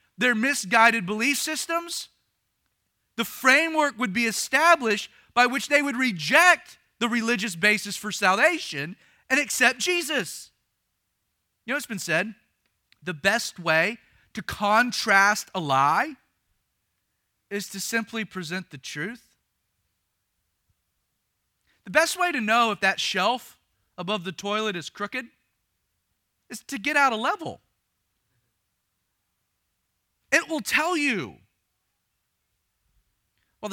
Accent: American